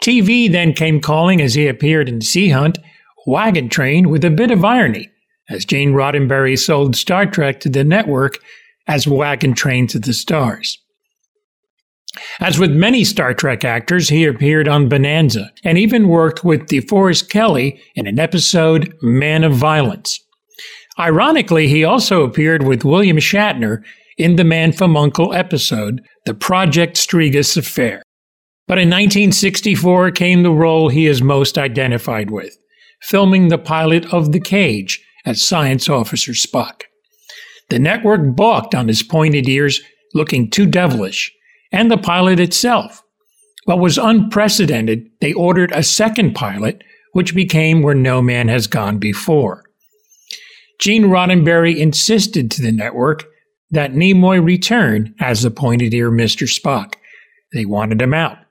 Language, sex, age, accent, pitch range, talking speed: English, male, 50-69, American, 140-190 Hz, 145 wpm